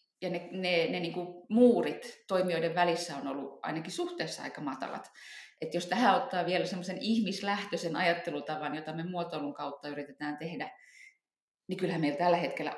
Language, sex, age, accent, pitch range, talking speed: English, female, 30-49, Finnish, 165-220 Hz, 150 wpm